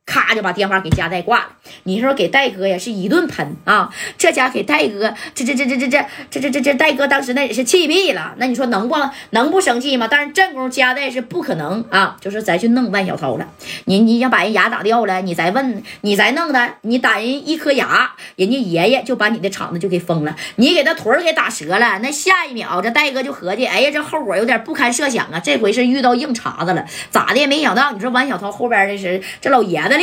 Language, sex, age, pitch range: Chinese, female, 20-39, 190-275 Hz